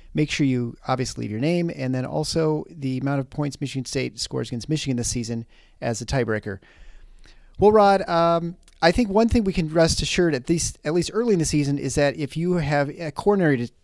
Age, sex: 40-59, male